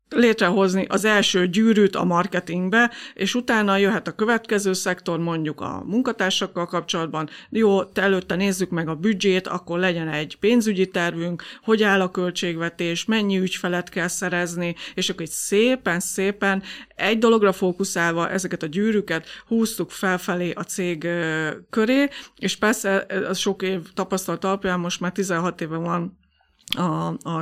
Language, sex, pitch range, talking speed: Hungarian, female, 170-200 Hz, 135 wpm